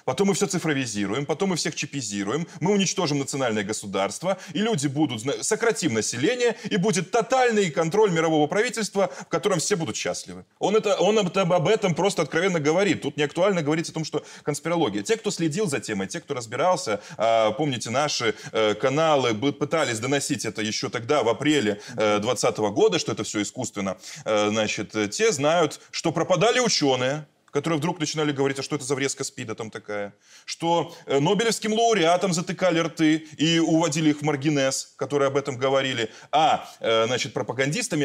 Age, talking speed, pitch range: 20-39, 160 wpm, 130-180 Hz